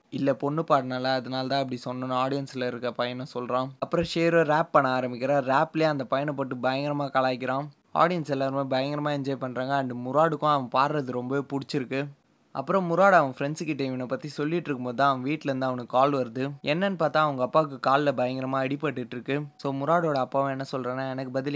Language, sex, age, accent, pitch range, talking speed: Tamil, male, 20-39, native, 130-145 Hz, 165 wpm